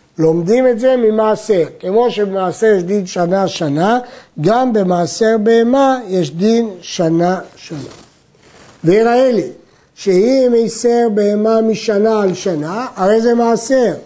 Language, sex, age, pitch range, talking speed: Hebrew, male, 60-79, 180-235 Hz, 120 wpm